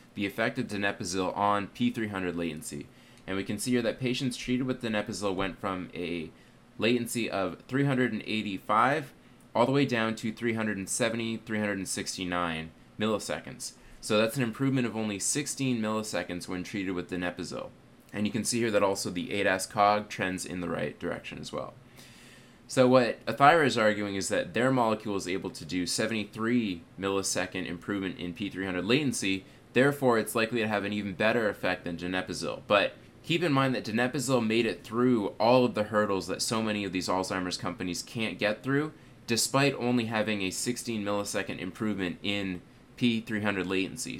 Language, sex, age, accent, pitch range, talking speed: English, male, 20-39, American, 95-120 Hz, 165 wpm